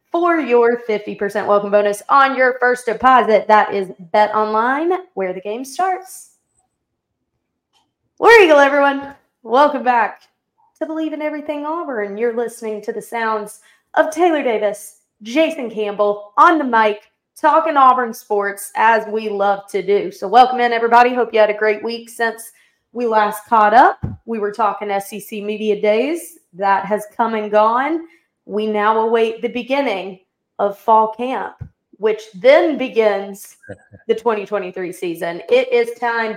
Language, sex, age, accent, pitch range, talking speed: English, female, 20-39, American, 210-270 Hz, 150 wpm